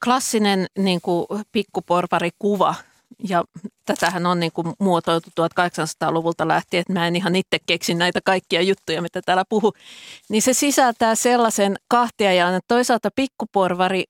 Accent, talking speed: native, 120 wpm